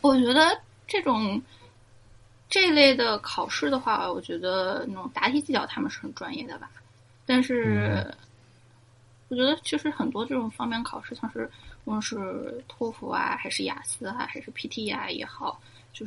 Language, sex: Chinese, female